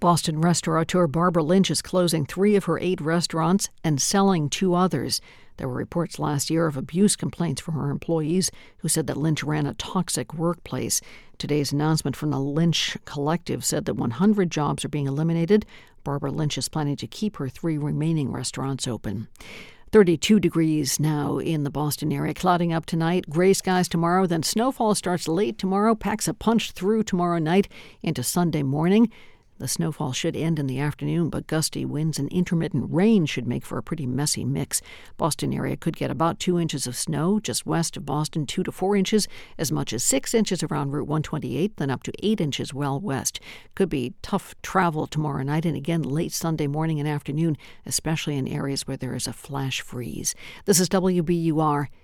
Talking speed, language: 185 wpm, English